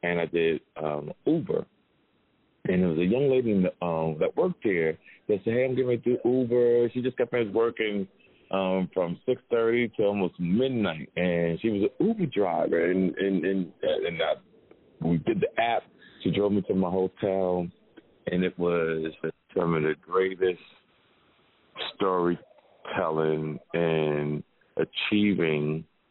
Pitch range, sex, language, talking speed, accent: 80-95 Hz, male, English, 145 wpm, American